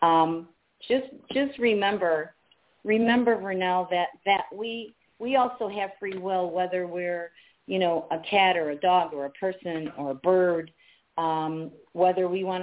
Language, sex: English, female